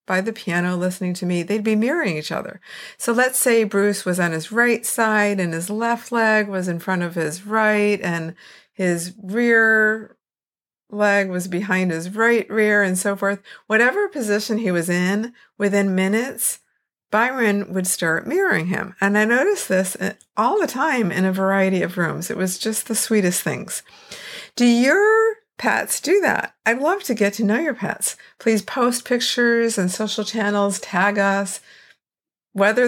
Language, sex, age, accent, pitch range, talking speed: English, female, 50-69, American, 185-225 Hz, 170 wpm